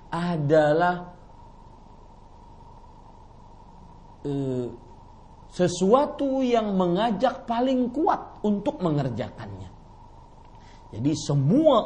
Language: Indonesian